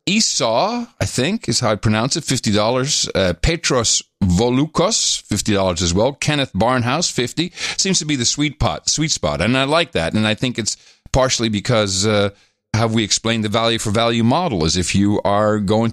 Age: 50-69